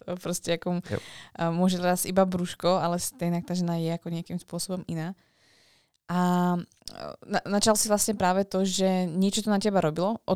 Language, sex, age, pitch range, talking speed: Slovak, female, 20-39, 170-195 Hz, 155 wpm